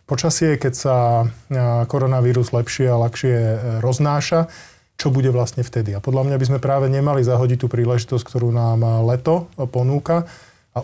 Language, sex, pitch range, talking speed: Slovak, male, 120-140 Hz, 150 wpm